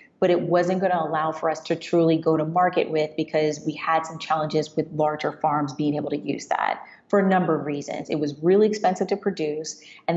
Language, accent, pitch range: English, American, 155-185 Hz